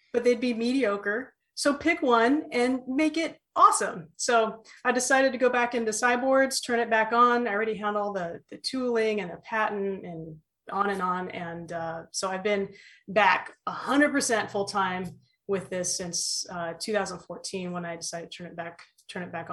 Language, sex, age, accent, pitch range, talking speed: English, female, 30-49, American, 175-220 Hz, 195 wpm